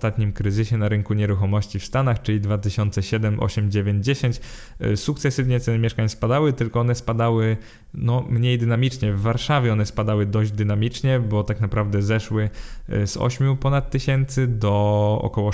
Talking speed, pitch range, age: 145 wpm, 105-125 Hz, 20-39